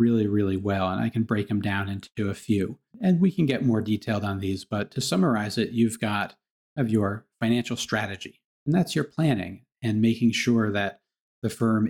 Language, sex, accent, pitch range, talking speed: English, male, American, 100-125 Hz, 200 wpm